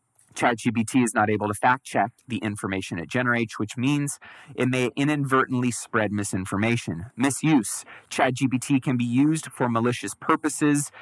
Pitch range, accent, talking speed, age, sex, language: 110-140 Hz, American, 135 wpm, 30-49, male, English